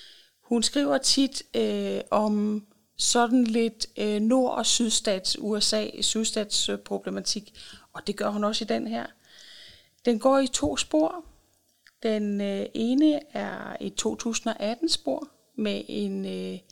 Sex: female